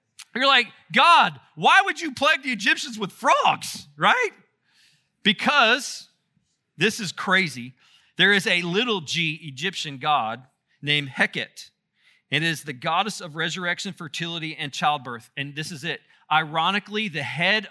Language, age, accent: English, 40-59, American